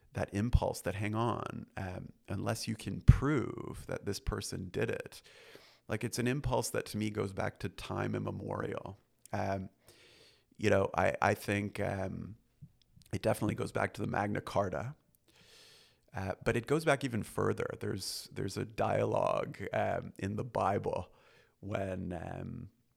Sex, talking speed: male, 155 wpm